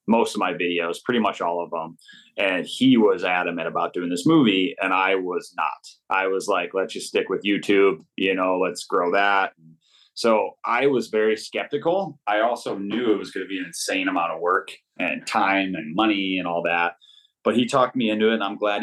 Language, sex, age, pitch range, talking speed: English, male, 30-49, 90-140 Hz, 215 wpm